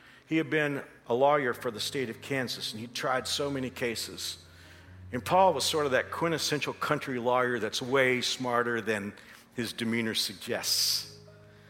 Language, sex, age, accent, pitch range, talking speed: English, male, 50-69, American, 115-160 Hz, 165 wpm